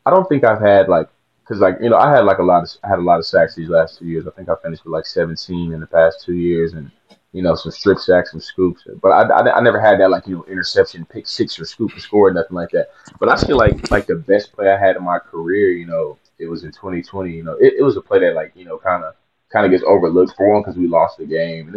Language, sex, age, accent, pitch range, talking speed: English, male, 20-39, American, 85-130 Hz, 310 wpm